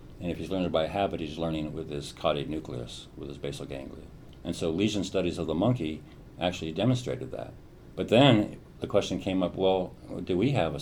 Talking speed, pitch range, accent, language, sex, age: 215 wpm, 80-95 Hz, American, English, male, 50-69